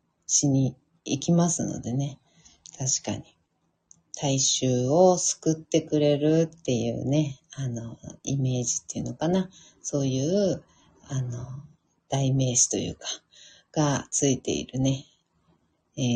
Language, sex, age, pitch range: Japanese, female, 40-59, 145-235 Hz